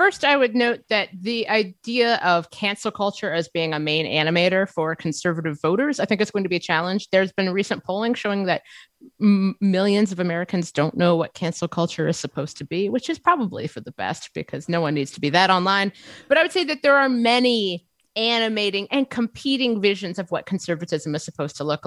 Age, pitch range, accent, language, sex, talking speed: 30-49, 170-230 Hz, American, English, female, 210 wpm